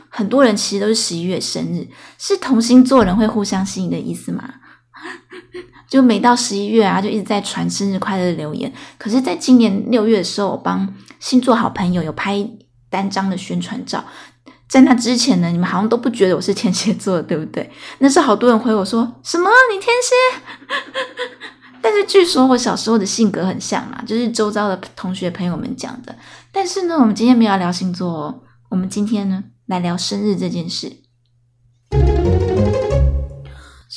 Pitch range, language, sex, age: 185-235 Hz, Chinese, female, 20-39